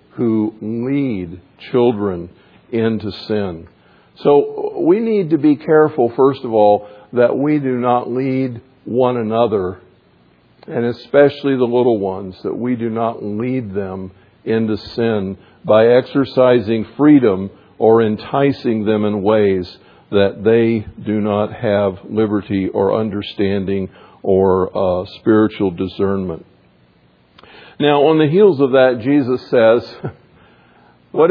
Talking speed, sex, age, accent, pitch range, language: 120 wpm, male, 50-69, American, 100-140 Hz, English